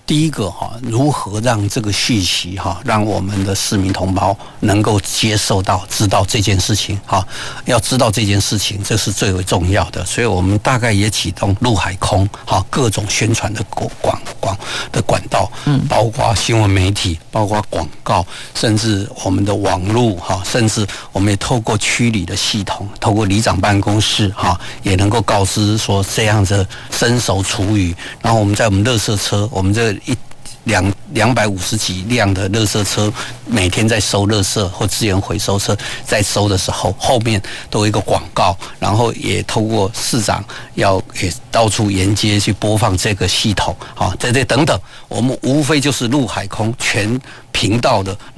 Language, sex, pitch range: Chinese, male, 100-115 Hz